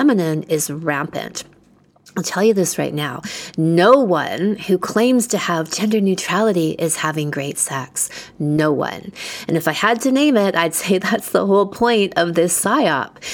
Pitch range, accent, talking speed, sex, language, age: 155-210 Hz, American, 175 wpm, female, English, 30-49